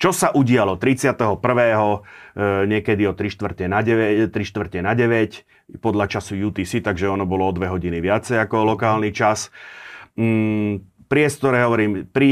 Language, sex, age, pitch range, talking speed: Slovak, male, 40-59, 95-110 Hz, 125 wpm